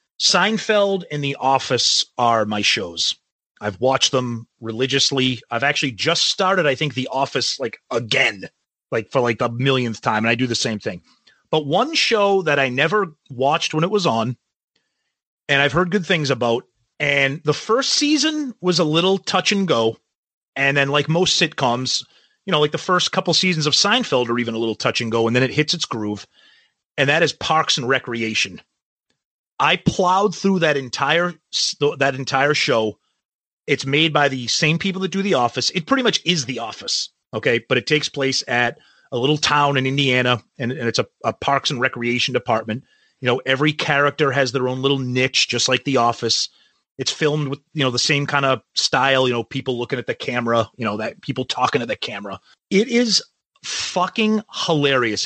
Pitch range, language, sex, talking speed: 125-165 Hz, English, male, 195 wpm